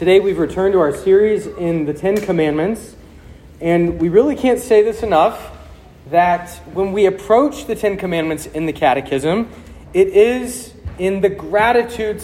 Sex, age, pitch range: male, 30-49, 140-200 Hz